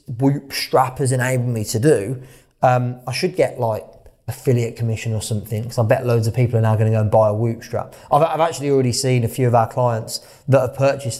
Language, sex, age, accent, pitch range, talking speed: English, male, 20-39, British, 120-140 Hz, 240 wpm